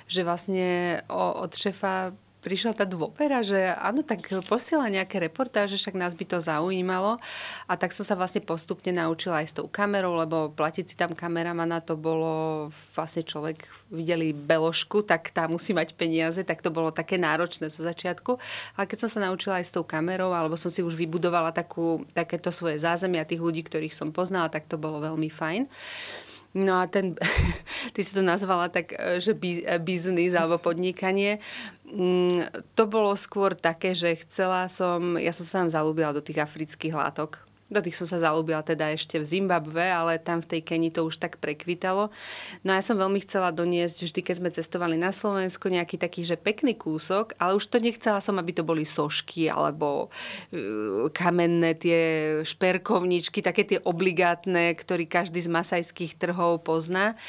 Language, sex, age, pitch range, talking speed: Slovak, female, 30-49, 165-190 Hz, 175 wpm